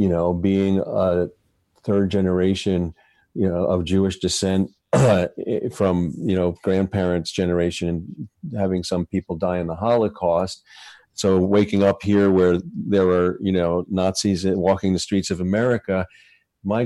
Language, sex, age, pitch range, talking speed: English, male, 50-69, 95-110 Hz, 140 wpm